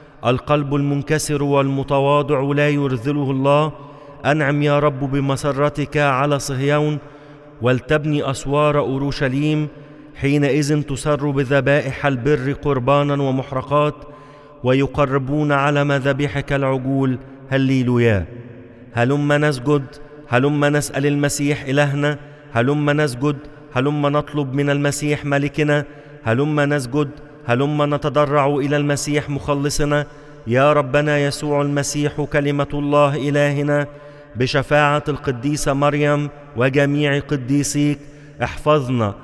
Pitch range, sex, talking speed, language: 140-145 Hz, male, 90 wpm, English